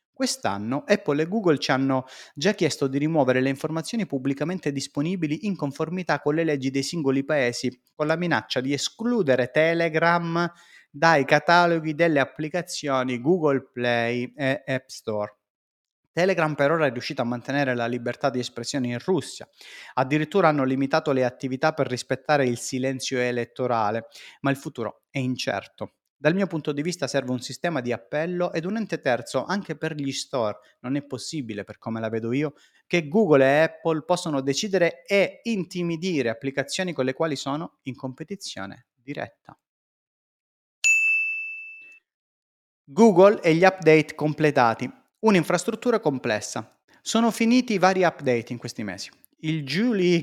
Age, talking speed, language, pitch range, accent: 30-49, 145 wpm, Italian, 130-175 Hz, native